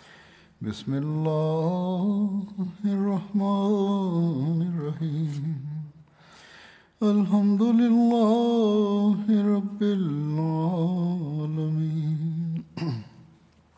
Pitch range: 150-195 Hz